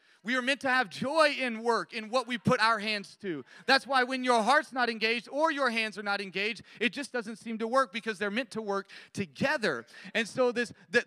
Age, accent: 30-49, American